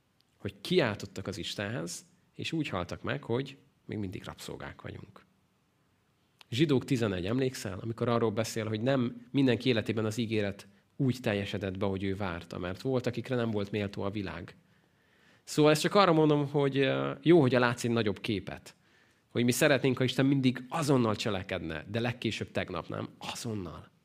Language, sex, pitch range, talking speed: Hungarian, male, 100-130 Hz, 160 wpm